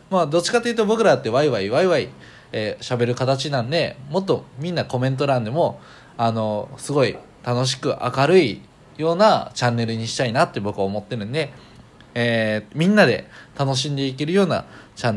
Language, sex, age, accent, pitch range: Japanese, male, 20-39, native, 115-160 Hz